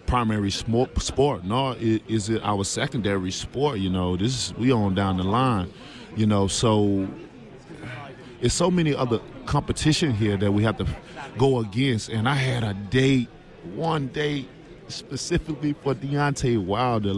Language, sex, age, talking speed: English, male, 20-39, 150 wpm